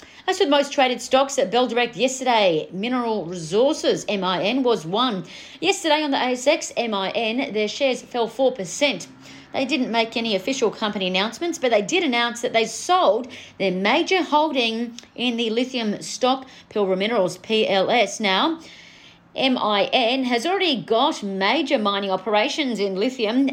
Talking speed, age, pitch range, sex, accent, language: 150 wpm, 40-59, 200-265 Hz, female, Australian, English